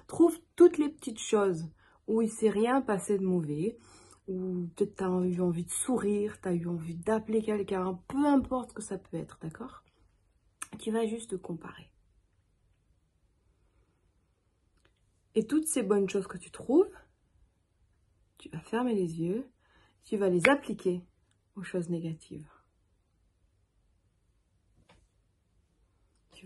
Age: 40-59